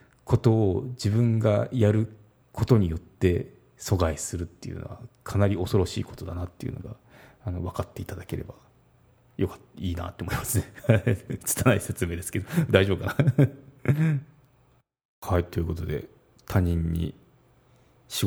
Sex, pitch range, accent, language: male, 90-125 Hz, native, Japanese